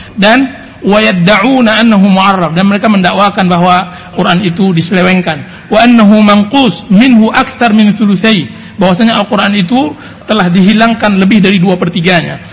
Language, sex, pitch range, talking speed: Indonesian, male, 180-220 Hz, 80 wpm